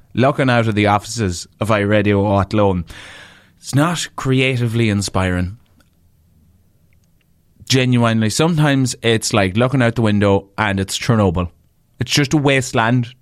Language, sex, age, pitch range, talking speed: English, male, 20-39, 100-140 Hz, 125 wpm